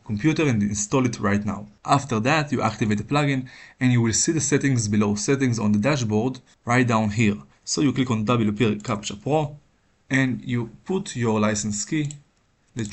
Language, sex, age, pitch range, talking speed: Hebrew, male, 20-39, 110-140 Hz, 185 wpm